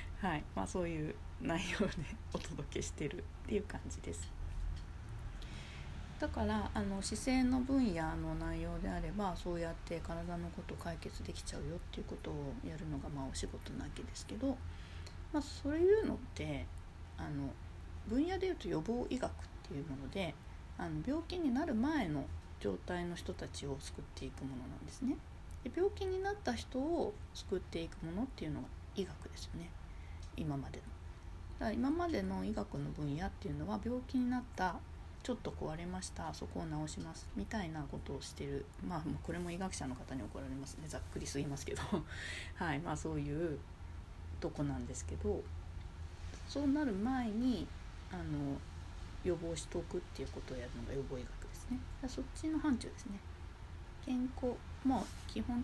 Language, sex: Japanese, female